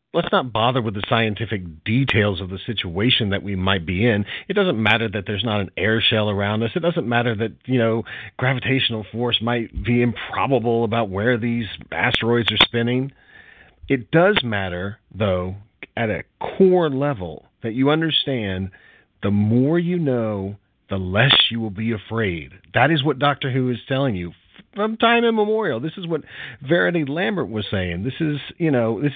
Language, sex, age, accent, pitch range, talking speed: English, male, 40-59, American, 105-140 Hz, 180 wpm